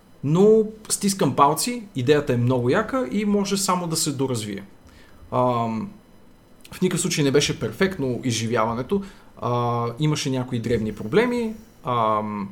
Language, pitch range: Bulgarian, 115-150 Hz